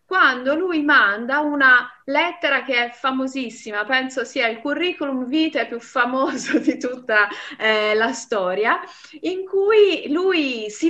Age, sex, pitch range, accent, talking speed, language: 30-49, female, 220-295 Hz, native, 130 wpm, Italian